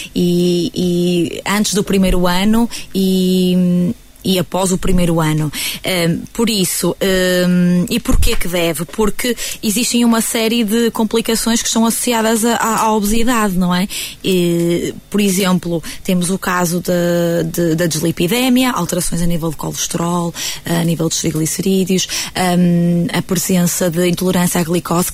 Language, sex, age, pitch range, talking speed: Portuguese, female, 20-39, 170-210 Hz, 140 wpm